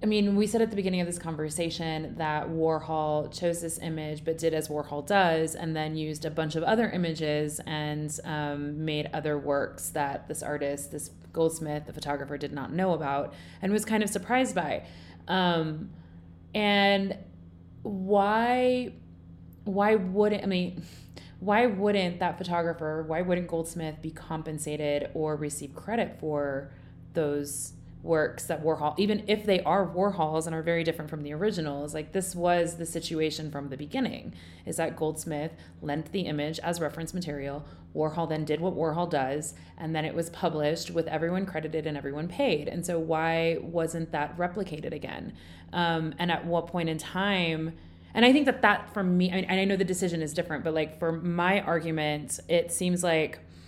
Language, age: English, 30-49